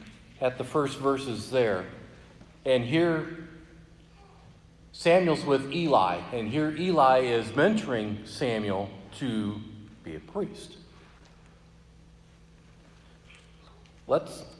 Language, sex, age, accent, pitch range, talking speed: English, male, 50-69, American, 110-155 Hz, 85 wpm